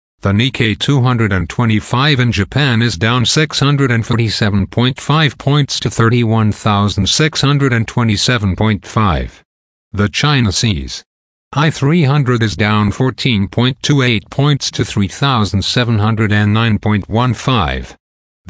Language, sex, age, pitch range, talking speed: English, male, 50-69, 100-125 Hz, 70 wpm